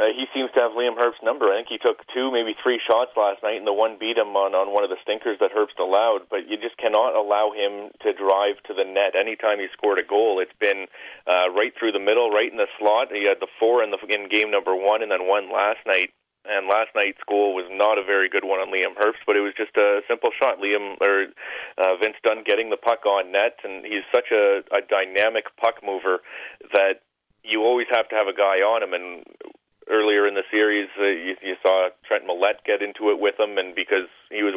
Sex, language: male, English